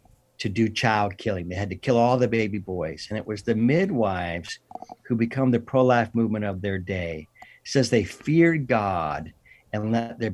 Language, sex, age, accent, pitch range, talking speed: English, male, 50-69, American, 110-155 Hz, 185 wpm